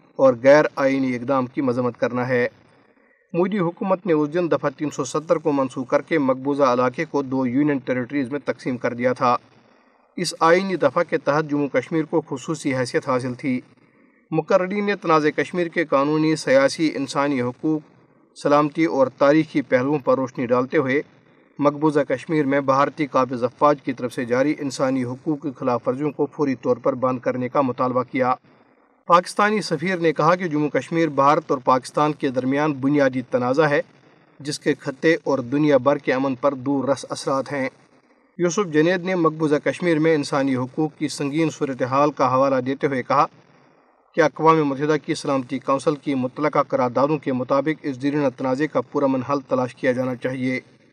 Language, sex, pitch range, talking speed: Urdu, male, 135-160 Hz, 175 wpm